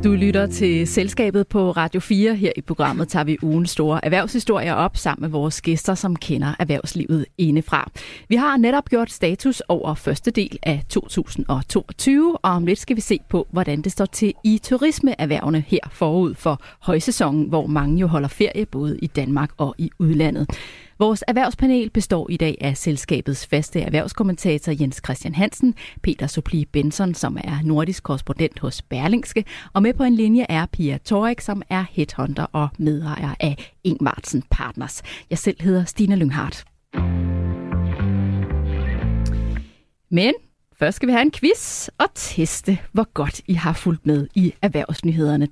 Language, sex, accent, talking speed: Danish, female, native, 160 wpm